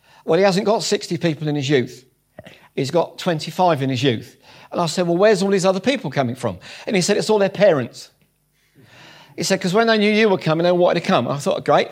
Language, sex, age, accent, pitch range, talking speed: English, male, 50-69, British, 160-195 Hz, 245 wpm